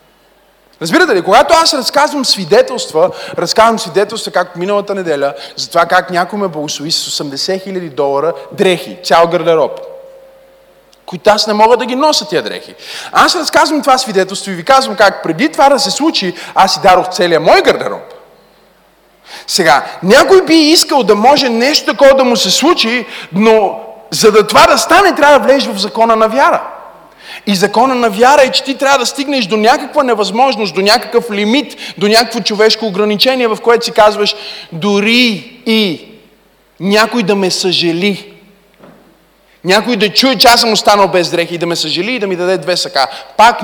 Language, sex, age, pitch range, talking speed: Bulgarian, male, 30-49, 185-260 Hz, 175 wpm